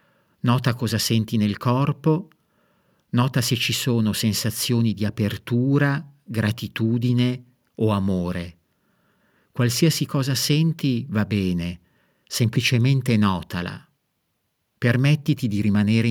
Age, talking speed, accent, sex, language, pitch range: 50-69, 95 wpm, native, male, Italian, 105-135 Hz